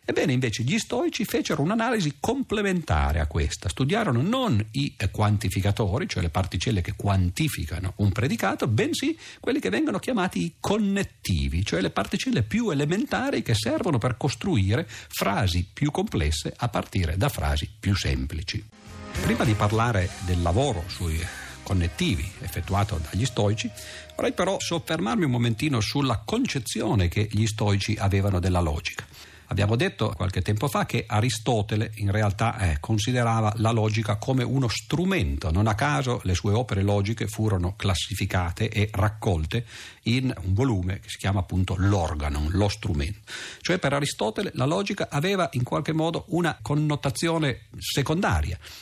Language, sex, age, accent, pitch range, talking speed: Italian, male, 50-69, native, 95-135 Hz, 145 wpm